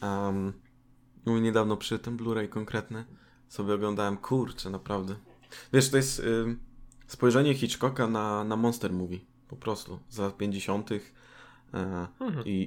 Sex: male